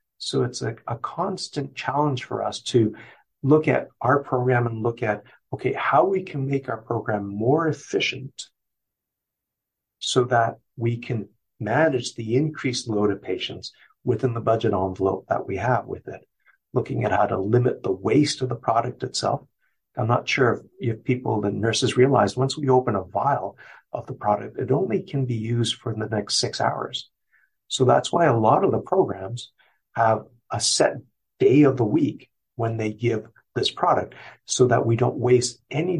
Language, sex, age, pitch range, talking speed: English, male, 50-69, 110-135 Hz, 180 wpm